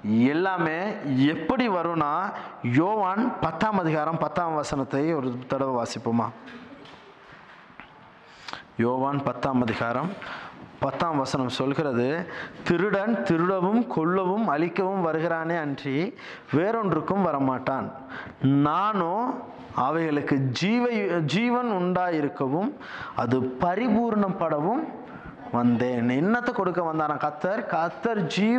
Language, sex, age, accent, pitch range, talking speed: Tamil, male, 20-39, native, 140-195 Hz, 75 wpm